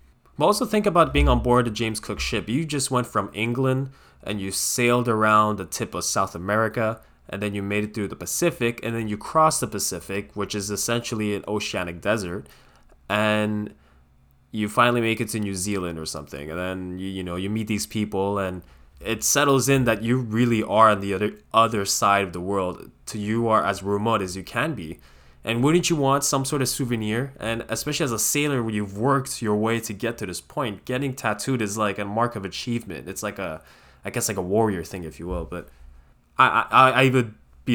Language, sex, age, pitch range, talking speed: English, male, 10-29, 95-120 Hz, 220 wpm